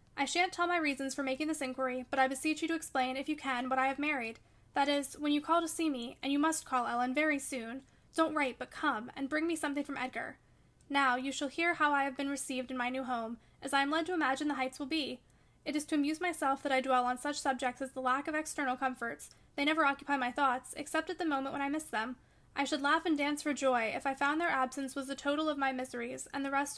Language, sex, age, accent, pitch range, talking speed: English, female, 10-29, American, 260-305 Hz, 270 wpm